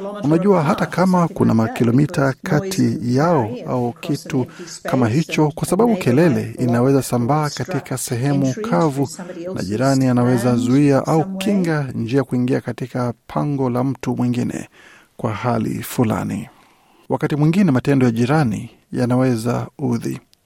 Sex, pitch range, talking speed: male, 120-160 Hz, 125 wpm